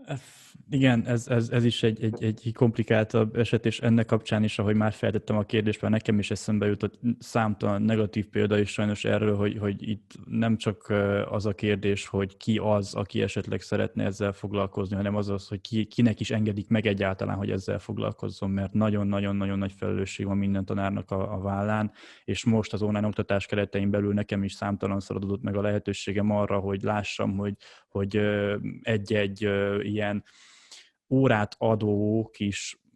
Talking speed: 170 wpm